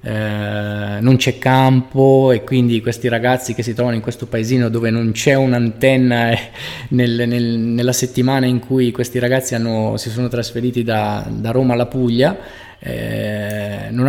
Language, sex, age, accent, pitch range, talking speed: Italian, male, 20-39, native, 115-135 Hz, 160 wpm